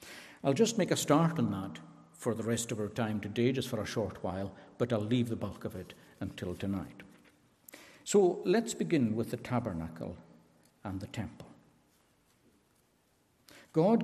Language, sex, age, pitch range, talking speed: English, male, 60-79, 95-135 Hz, 160 wpm